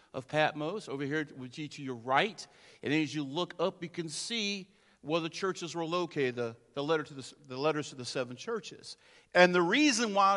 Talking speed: 180 wpm